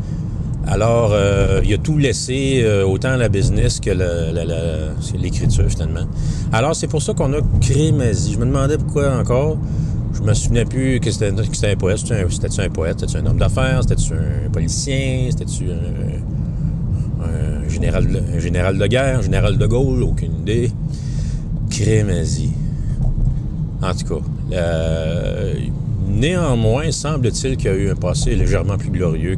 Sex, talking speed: male, 165 wpm